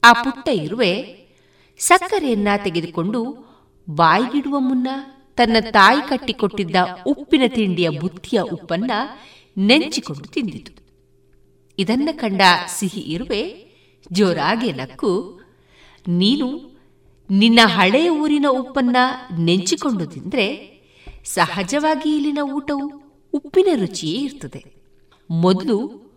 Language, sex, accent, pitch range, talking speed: Kannada, female, native, 185-275 Hz, 85 wpm